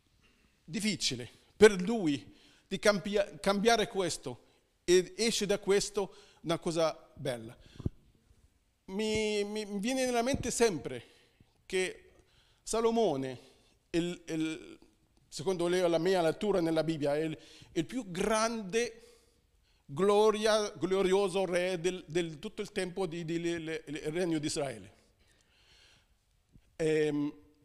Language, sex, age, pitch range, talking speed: Italian, male, 50-69, 145-215 Hz, 110 wpm